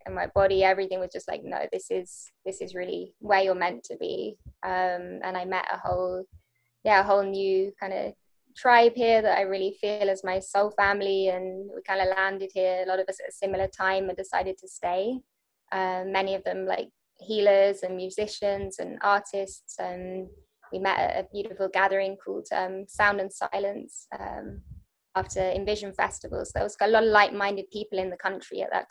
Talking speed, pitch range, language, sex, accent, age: 200 wpm, 190-210 Hz, English, female, British, 20-39